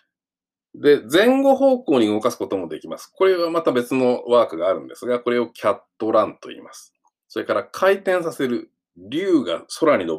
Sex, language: male, Japanese